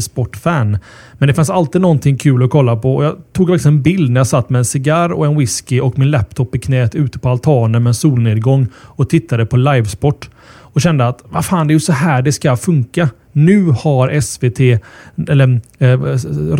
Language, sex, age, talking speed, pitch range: Swedish, male, 30-49, 200 wpm, 120-150 Hz